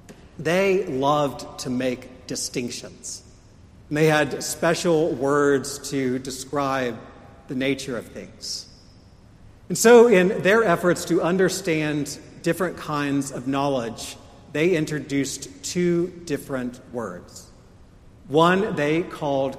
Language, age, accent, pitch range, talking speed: English, 40-59, American, 125-150 Hz, 105 wpm